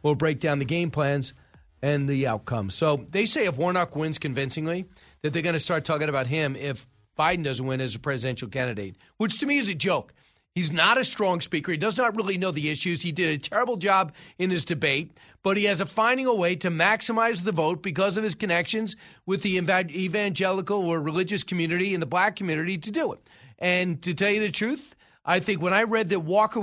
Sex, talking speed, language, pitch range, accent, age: male, 225 wpm, English, 155-195 Hz, American, 40-59